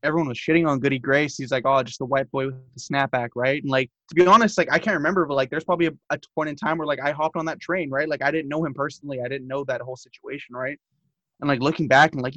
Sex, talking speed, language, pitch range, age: male, 300 wpm, English, 130-160 Hz, 20-39